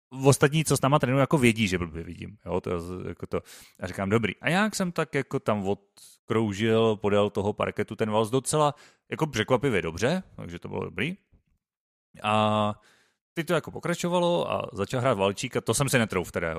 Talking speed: 185 wpm